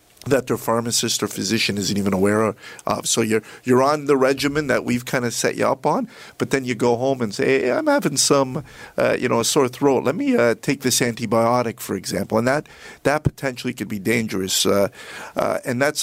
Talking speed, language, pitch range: 220 wpm, English, 110-130 Hz